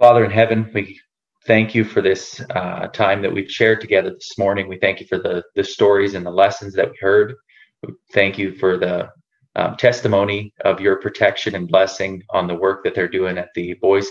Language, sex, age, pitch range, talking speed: English, male, 30-49, 95-110 Hz, 215 wpm